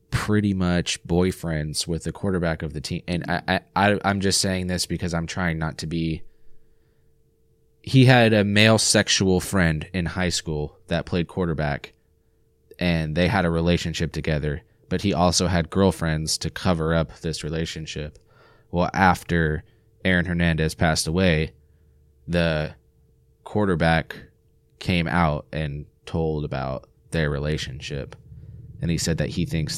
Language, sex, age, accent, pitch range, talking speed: English, male, 20-39, American, 75-95 Hz, 140 wpm